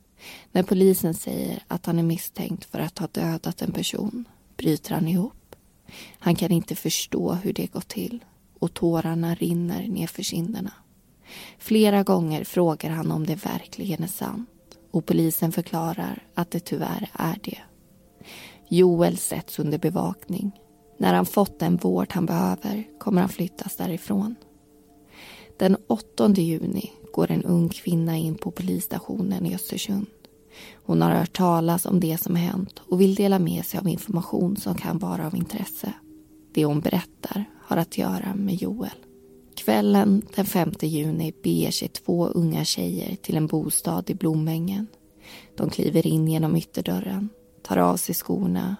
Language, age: Swedish, 20-39